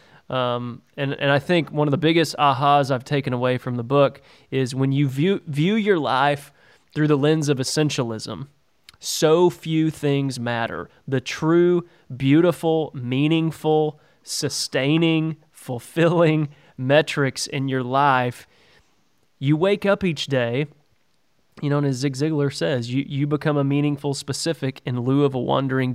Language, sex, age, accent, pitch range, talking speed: English, male, 20-39, American, 130-150 Hz, 150 wpm